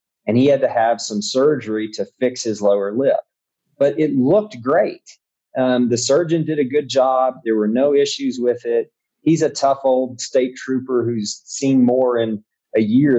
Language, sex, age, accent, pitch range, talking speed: English, male, 40-59, American, 115-155 Hz, 185 wpm